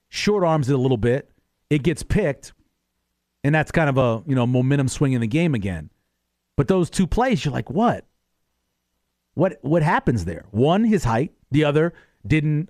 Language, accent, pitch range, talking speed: English, American, 110-175 Hz, 185 wpm